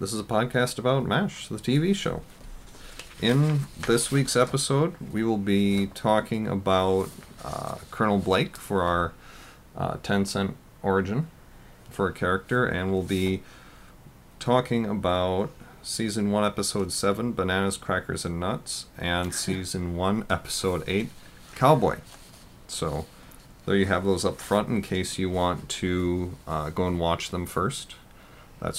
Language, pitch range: English, 85-100 Hz